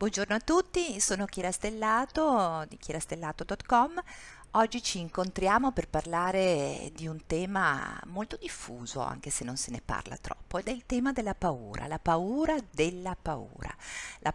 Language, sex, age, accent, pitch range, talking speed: Italian, female, 50-69, native, 155-205 Hz, 150 wpm